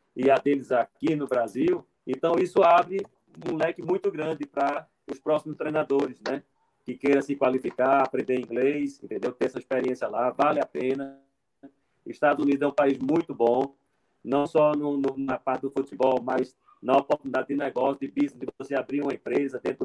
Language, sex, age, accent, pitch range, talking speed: Portuguese, male, 40-59, Brazilian, 130-160 Hz, 180 wpm